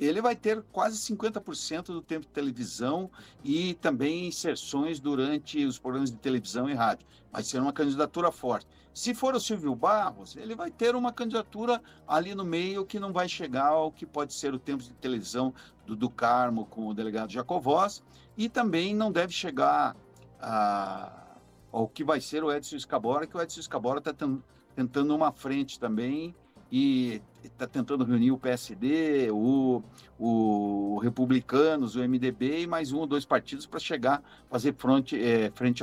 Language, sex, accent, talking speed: Portuguese, male, Brazilian, 165 wpm